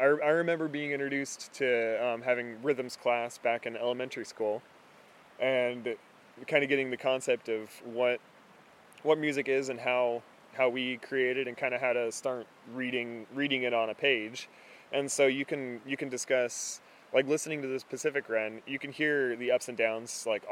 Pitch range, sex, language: 115-135 Hz, male, English